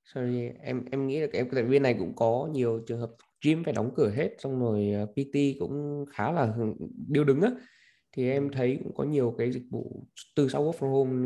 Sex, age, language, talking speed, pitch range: male, 20-39, Vietnamese, 225 wpm, 110-140 Hz